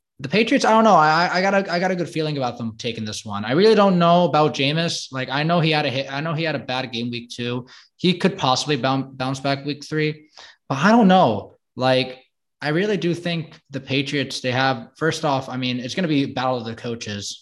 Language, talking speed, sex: English, 250 wpm, male